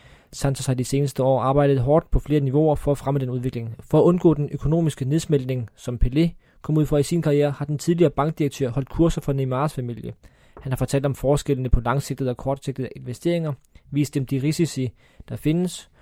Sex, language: male, Danish